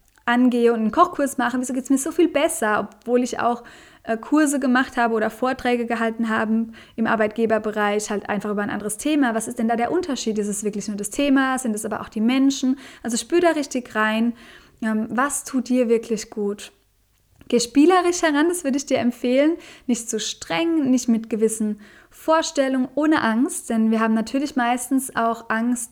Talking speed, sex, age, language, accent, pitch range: 190 wpm, female, 20-39, German, German, 215-255 Hz